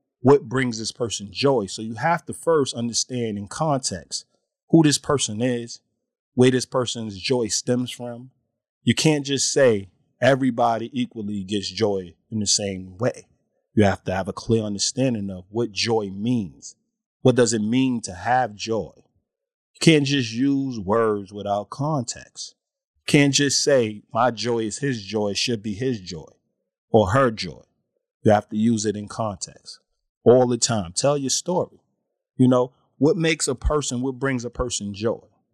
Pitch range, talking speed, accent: 105-130 Hz, 170 wpm, American